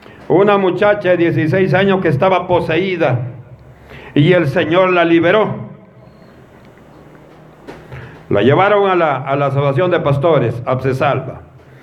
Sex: male